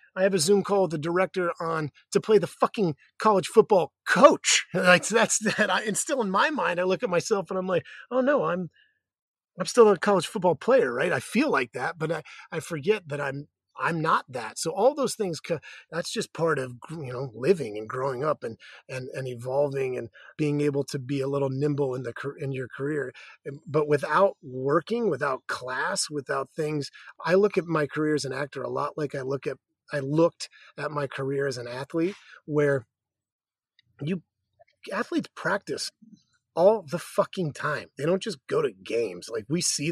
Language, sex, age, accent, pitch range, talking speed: English, male, 30-49, American, 140-185 Hz, 200 wpm